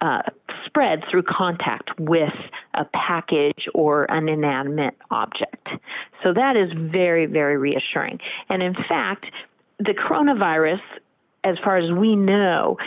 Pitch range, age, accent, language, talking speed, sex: 155-190 Hz, 40-59, American, English, 125 wpm, female